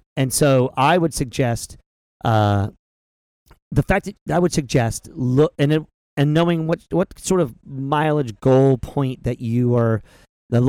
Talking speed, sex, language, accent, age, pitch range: 155 wpm, male, English, American, 40-59, 115-150 Hz